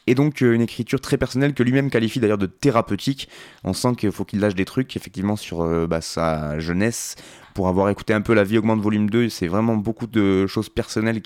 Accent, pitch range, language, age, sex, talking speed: French, 95-120 Hz, French, 20-39, male, 230 wpm